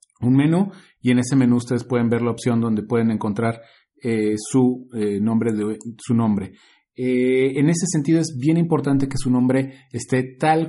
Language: Spanish